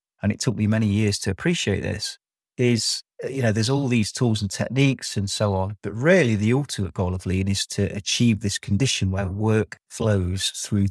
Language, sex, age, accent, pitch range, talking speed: English, male, 30-49, British, 100-120 Hz, 205 wpm